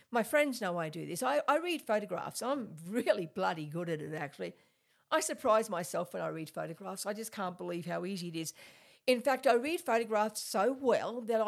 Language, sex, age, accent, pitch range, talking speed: English, female, 50-69, Australian, 180-220 Hz, 210 wpm